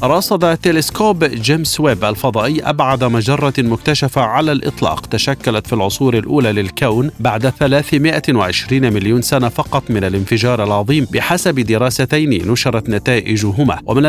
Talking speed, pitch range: 120 wpm, 110-145 Hz